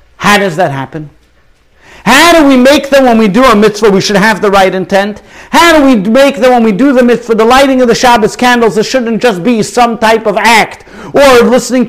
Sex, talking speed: male, 230 wpm